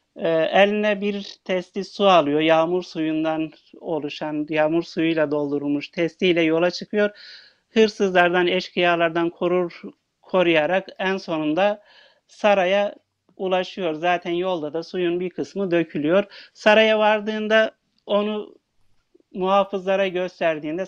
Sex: male